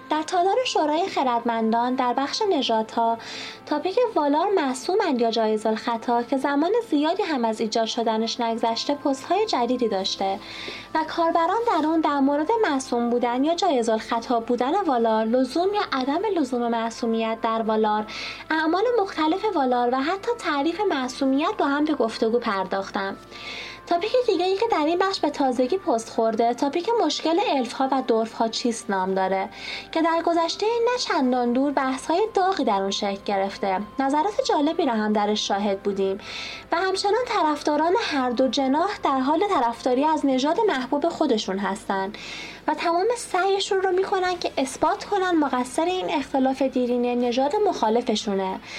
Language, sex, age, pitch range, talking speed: Persian, female, 20-39, 235-345 Hz, 155 wpm